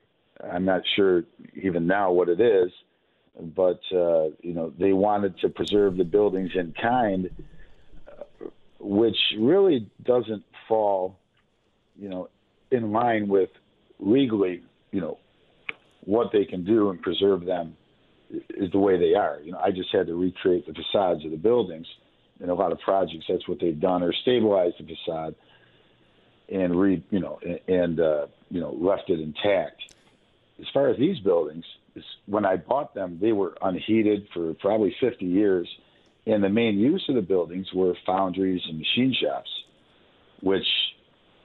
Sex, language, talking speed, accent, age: male, English, 160 wpm, American, 50-69